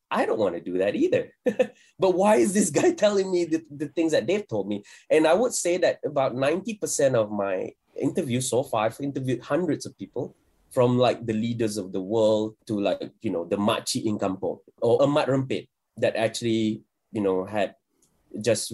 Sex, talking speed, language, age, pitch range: male, 205 wpm, English, 20-39, 110-150 Hz